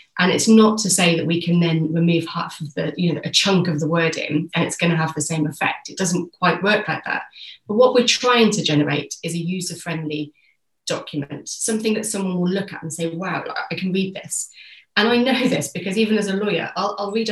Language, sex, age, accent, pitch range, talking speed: English, female, 30-49, British, 160-195 Hz, 245 wpm